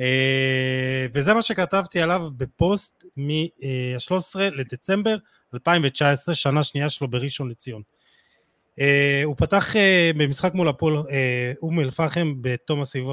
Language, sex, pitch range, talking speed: Hebrew, male, 130-175 Hz, 125 wpm